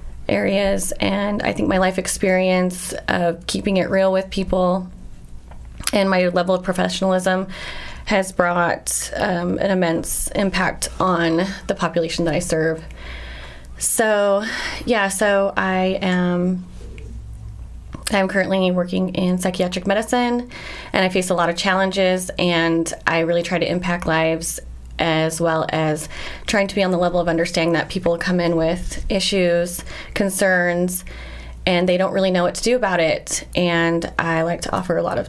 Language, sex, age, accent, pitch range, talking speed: English, female, 20-39, American, 165-195 Hz, 155 wpm